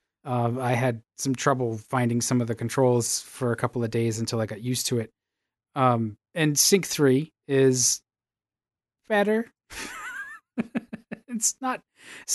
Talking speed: 145 wpm